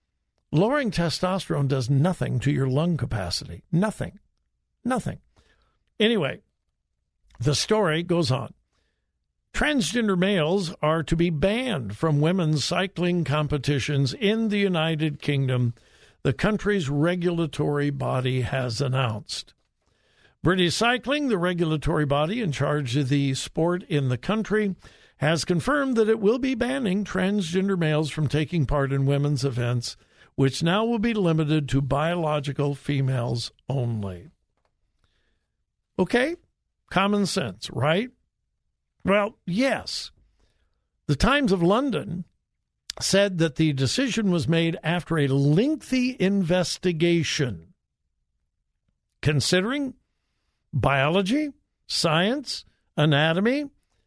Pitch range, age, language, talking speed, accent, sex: 140-200 Hz, 60-79, English, 105 wpm, American, male